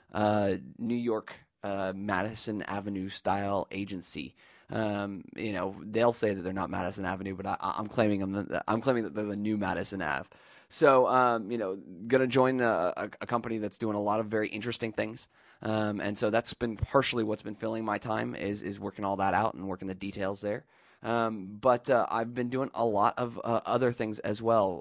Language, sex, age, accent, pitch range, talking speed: English, male, 20-39, American, 100-120 Hz, 215 wpm